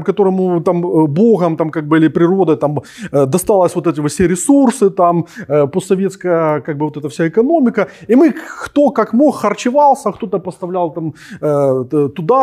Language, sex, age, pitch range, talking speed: Ukrainian, male, 30-49, 160-200 Hz, 150 wpm